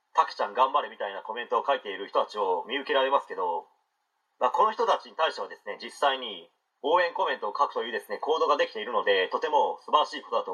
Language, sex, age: Japanese, male, 40-59